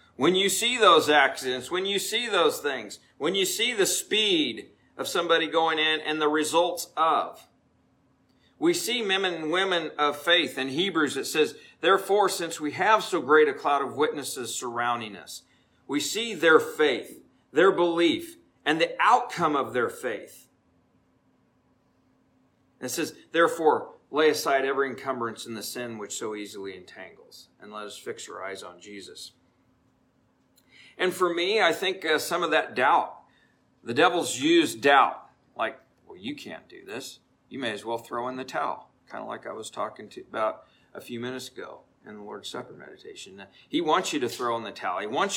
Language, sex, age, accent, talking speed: English, male, 50-69, American, 180 wpm